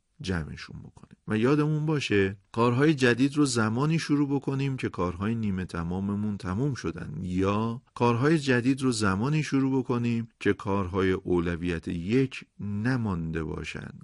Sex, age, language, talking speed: male, 40-59, Persian, 130 wpm